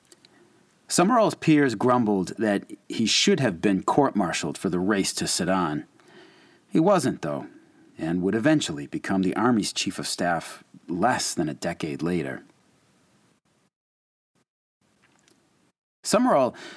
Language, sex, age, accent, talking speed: English, male, 40-59, American, 120 wpm